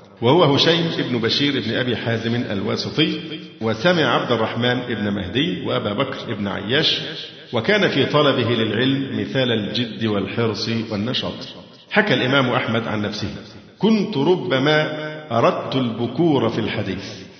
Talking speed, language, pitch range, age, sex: 125 wpm, Arabic, 110-140 Hz, 50-69, male